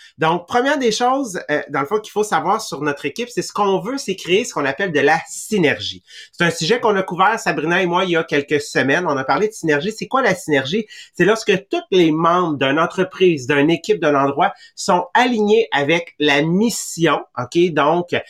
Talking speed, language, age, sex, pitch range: 220 wpm, English, 30-49, male, 145-195 Hz